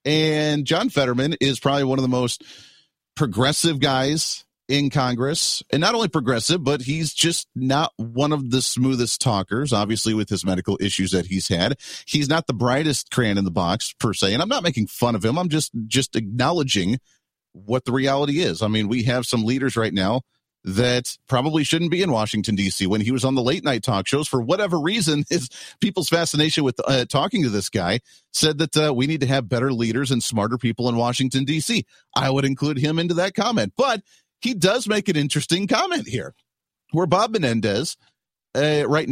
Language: English